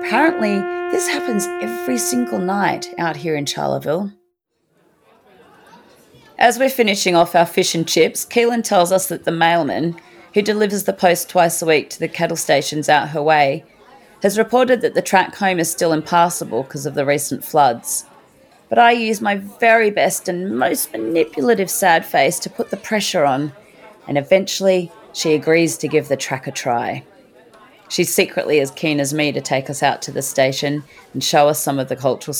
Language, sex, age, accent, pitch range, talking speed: English, female, 30-49, Australian, 150-195 Hz, 180 wpm